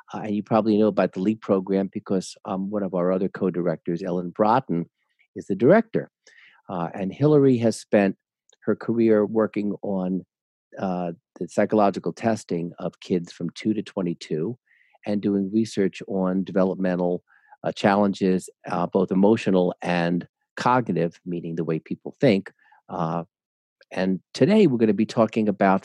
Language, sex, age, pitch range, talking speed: English, male, 50-69, 90-110 Hz, 155 wpm